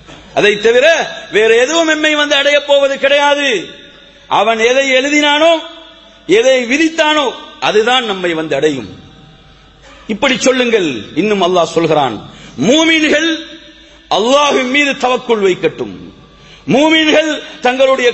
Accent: Indian